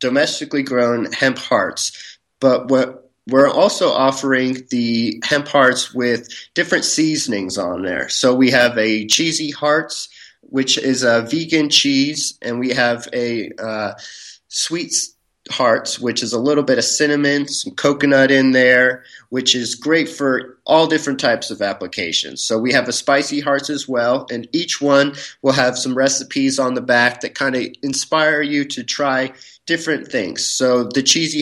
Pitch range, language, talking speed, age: 120-145 Hz, English, 160 wpm, 30-49